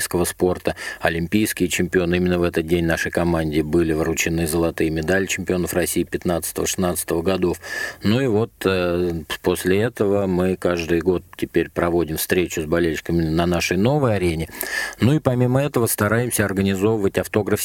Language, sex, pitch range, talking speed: Russian, male, 85-100 Hz, 145 wpm